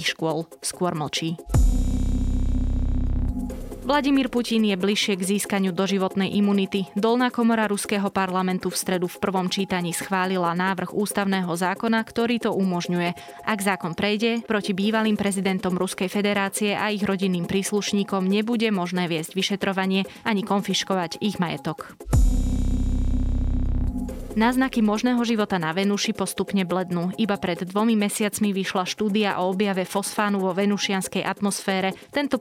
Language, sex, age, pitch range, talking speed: Slovak, female, 20-39, 175-205 Hz, 125 wpm